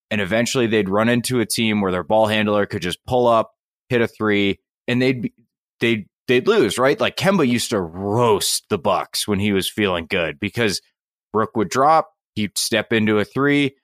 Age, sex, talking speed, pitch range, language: 20-39, male, 195 wpm, 105-125 Hz, English